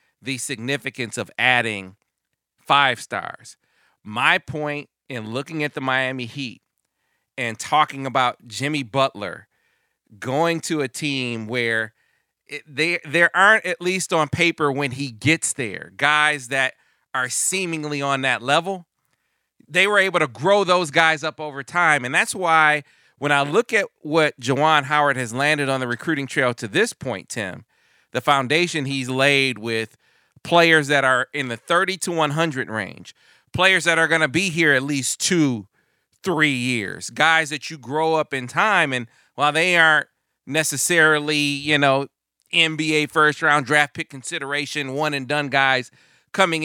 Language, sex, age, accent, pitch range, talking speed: English, male, 40-59, American, 130-160 Hz, 160 wpm